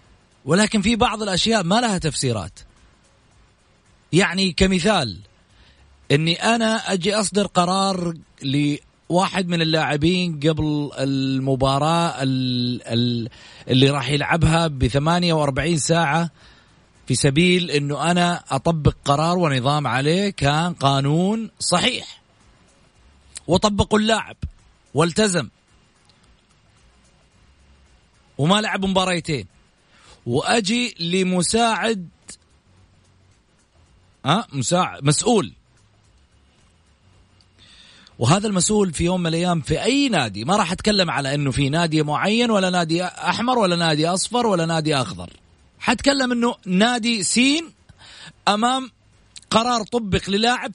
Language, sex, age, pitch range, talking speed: Arabic, male, 40-59, 130-195 Hz, 95 wpm